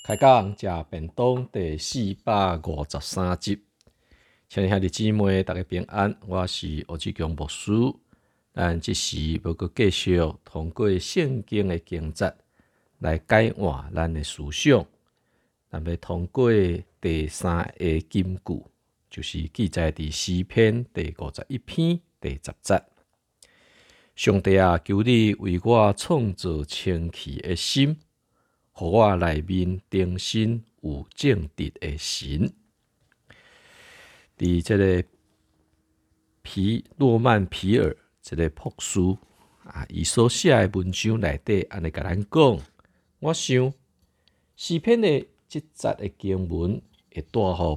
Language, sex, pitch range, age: Chinese, male, 80-105 Hz, 50-69